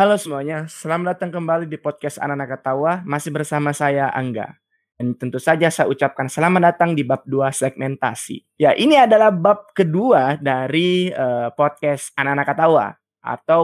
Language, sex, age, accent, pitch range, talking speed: Indonesian, male, 20-39, native, 135-170 Hz, 155 wpm